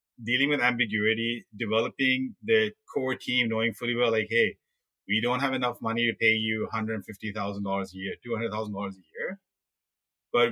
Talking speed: 155 wpm